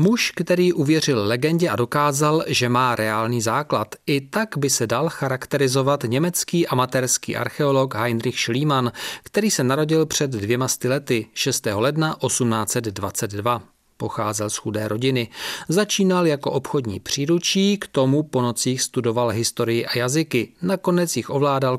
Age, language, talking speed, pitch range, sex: 40-59, Czech, 135 wpm, 120-155 Hz, male